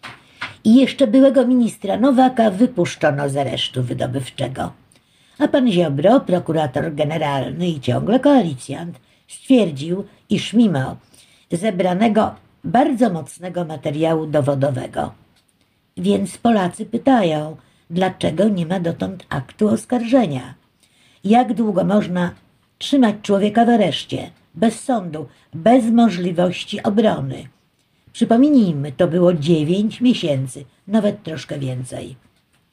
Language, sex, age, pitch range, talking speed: Polish, female, 50-69, 150-225 Hz, 100 wpm